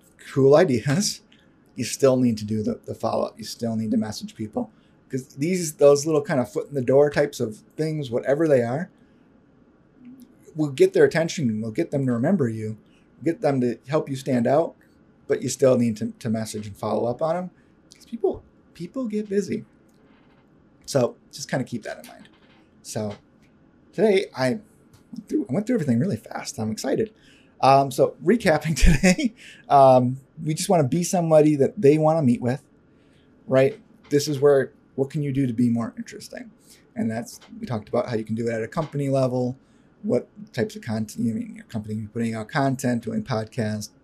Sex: male